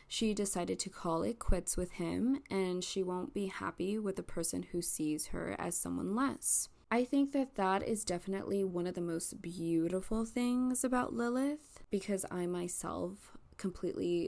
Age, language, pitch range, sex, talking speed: 20-39, English, 170-205 Hz, female, 170 wpm